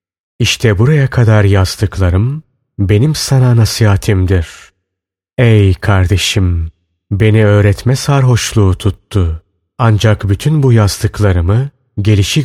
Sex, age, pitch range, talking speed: male, 30-49, 95-125 Hz, 85 wpm